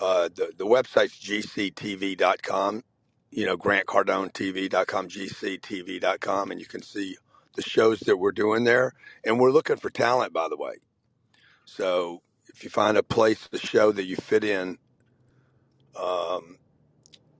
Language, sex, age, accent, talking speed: English, male, 50-69, American, 140 wpm